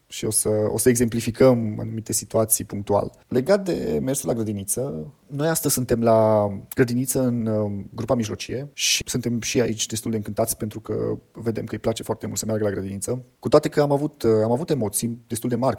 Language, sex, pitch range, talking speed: Romanian, male, 110-120 Hz, 200 wpm